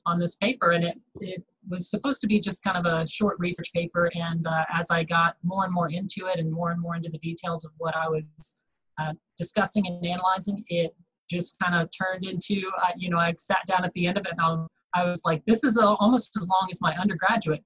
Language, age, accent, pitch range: English, 30-49, American, 170-195 Hz